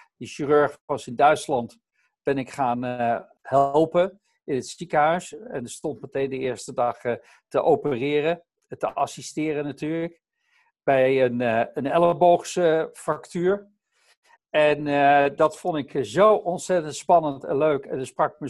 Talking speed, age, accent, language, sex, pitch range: 150 wpm, 60-79, Dutch, Dutch, male, 140-180 Hz